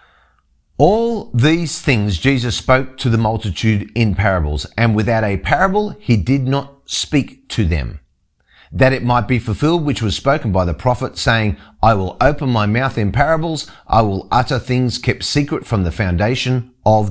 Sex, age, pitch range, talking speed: male, 30-49, 100-135 Hz, 170 wpm